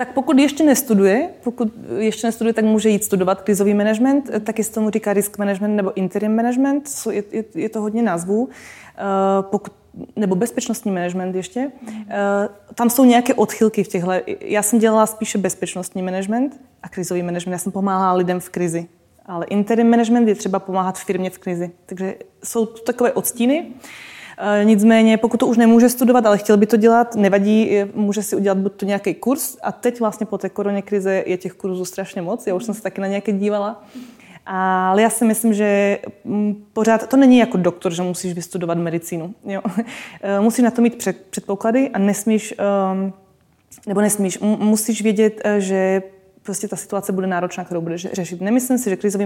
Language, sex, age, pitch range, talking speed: Czech, female, 20-39, 190-225 Hz, 175 wpm